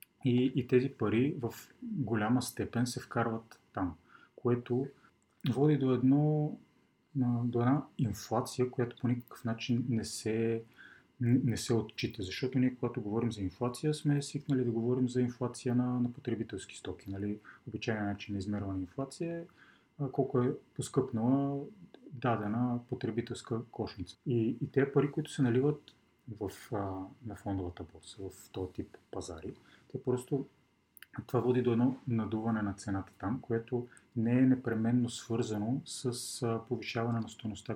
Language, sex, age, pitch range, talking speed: Bulgarian, male, 30-49, 110-130 Hz, 140 wpm